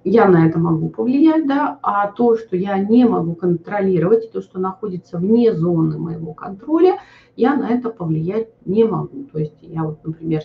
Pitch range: 155-230 Hz